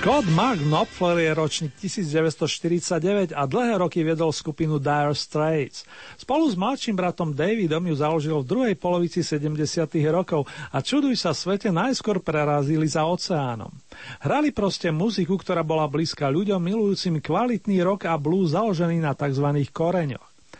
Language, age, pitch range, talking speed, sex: Slovak, 40-59, 150-190 Hz, 145 wpm, male